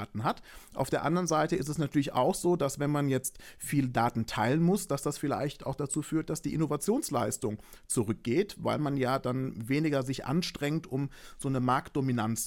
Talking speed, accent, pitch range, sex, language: 185 wpm, German, 125-155 Hz, male, German